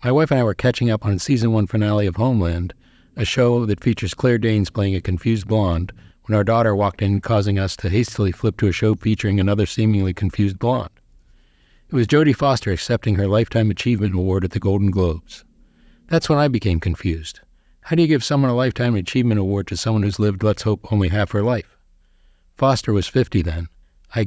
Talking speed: 210 wpm